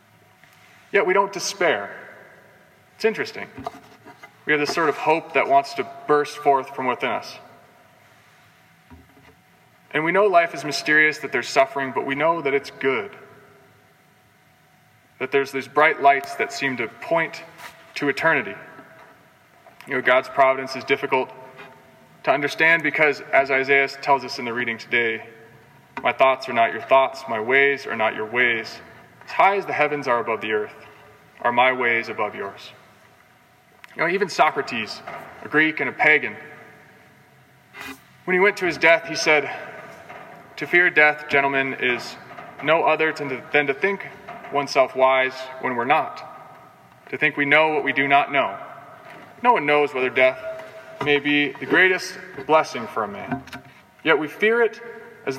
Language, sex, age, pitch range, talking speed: English, male, 20-39, 130-160 Hz, 160 wpm